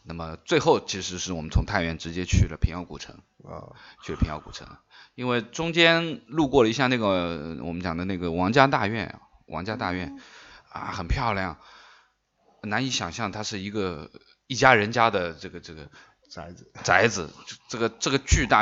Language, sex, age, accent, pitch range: Chinese, male, 20-39, native, 90-115 Hz